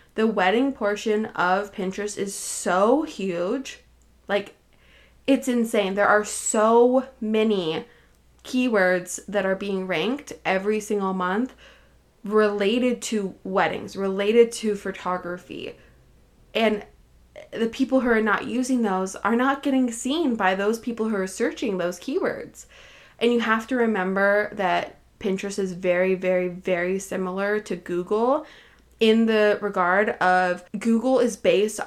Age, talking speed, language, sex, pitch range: 20-39, 130 wpm, English, female, 190-230 Hz